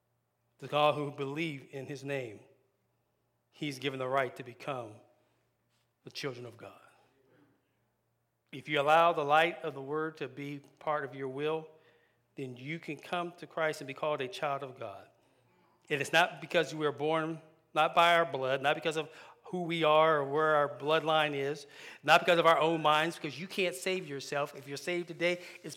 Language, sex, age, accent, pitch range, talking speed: English, male, 40-59, American, 140-165 Hz, 190 wpm